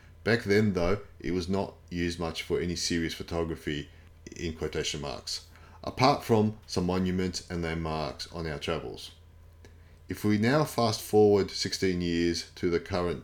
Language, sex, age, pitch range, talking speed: English, male, 30-49, 85-95 Hz, 155 wpm